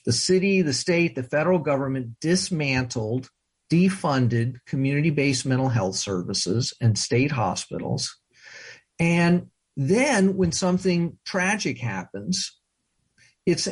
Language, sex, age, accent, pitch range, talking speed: English, male, 50-69, American, 130-175 Hz, 100 wpm